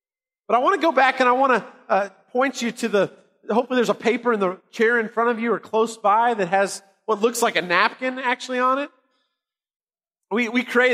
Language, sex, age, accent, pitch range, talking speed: English, male, 30-49, American, 210-255 Hz, 230 wpm